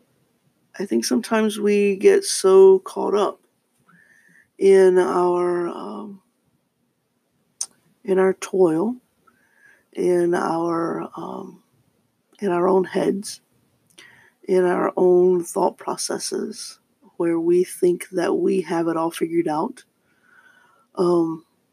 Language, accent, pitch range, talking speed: English, American, 175-245 Hz, 100 wpm